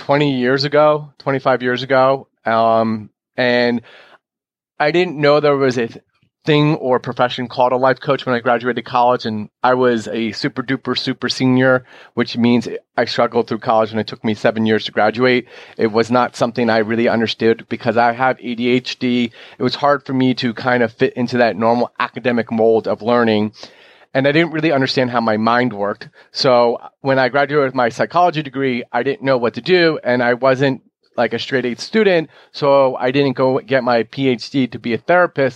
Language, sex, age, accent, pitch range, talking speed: English, male, 30-49, American, 120-135 Hz, 195 wpm